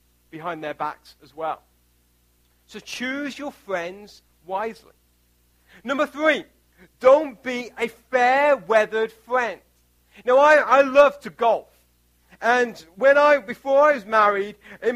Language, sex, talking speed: English, male, 130 wpm